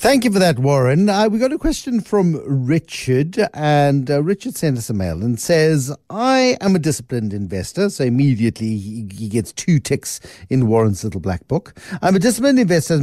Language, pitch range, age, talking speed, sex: English, 120-180 Hz, 60-79, 195 wpm, male